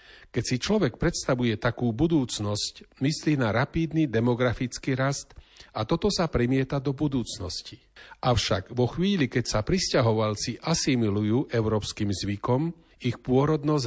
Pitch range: 115-140 Hz